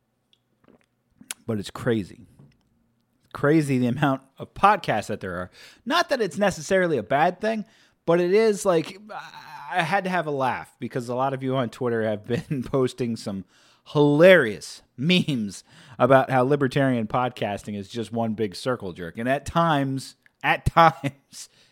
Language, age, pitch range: English, 30-49, 115-155 Hz